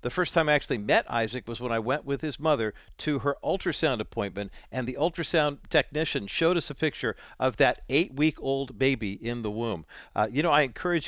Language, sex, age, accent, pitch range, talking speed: English, male, 50-69, American, 120-155 Hz, 205 wpm